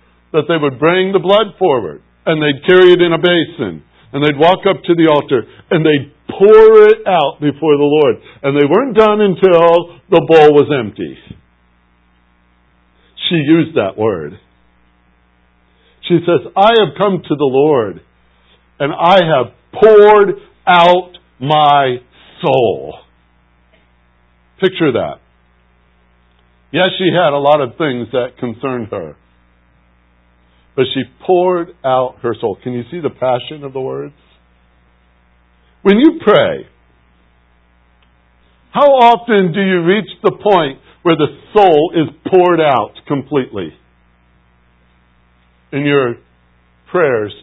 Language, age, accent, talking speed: English, 60-79, American, 130 wpm